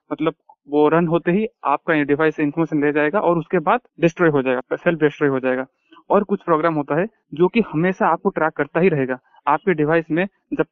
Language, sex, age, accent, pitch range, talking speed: Hindi, male, 30-49, native, 150-180 Hz, 215 wpm